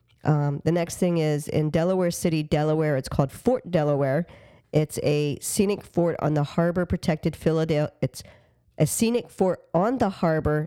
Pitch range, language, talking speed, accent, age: 145-175 Hz, English, 165 wpm, American, 40-59